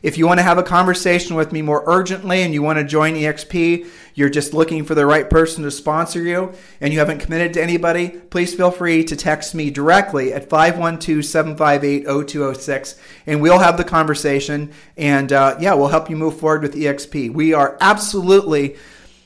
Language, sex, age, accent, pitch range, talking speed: English, male, 40-59, American, 145-170 Hz, 185 wpm